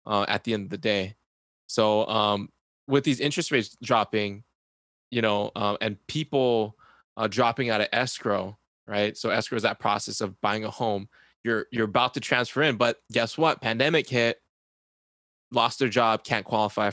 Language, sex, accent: English, male, American